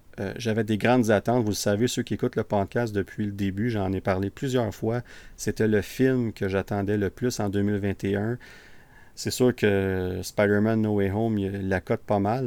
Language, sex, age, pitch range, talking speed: French, male, 40-59, 100-115 Hz, 205 wpm